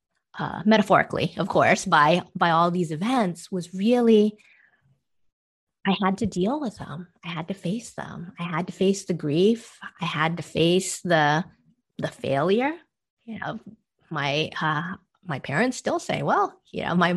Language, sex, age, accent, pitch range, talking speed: English, female, 30-49, American, 165-205 Hz, 165 wpm